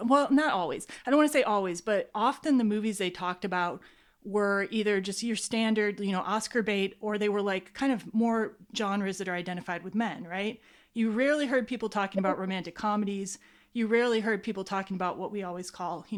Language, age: English, 30-49